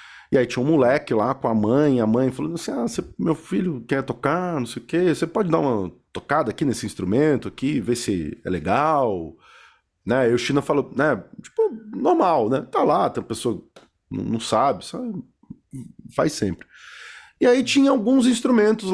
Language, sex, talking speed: Portuguese, male, 185 wpm